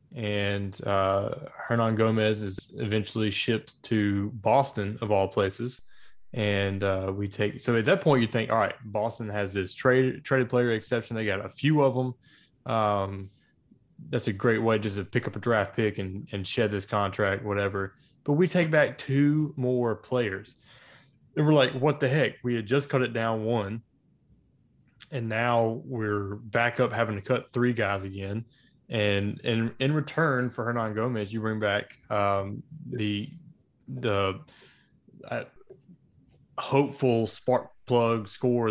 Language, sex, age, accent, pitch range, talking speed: English, male, 20-39, American, 105-125 Hz, 160 wpm